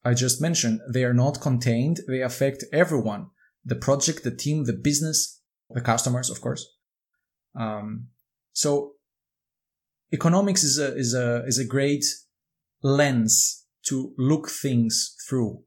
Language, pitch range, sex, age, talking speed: English, 115-140 Hz, male, 20-39, 135 wpm